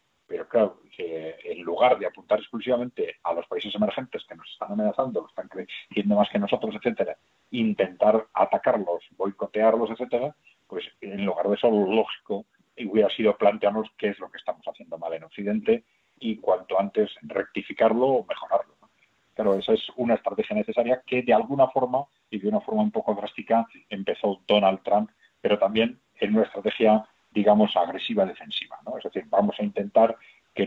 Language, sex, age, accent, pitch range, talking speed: Spanish, male, 40-59, Spanish, 100-130 Hz, 170 wpm